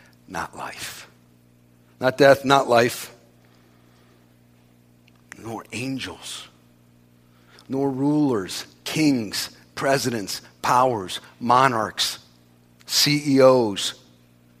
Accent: American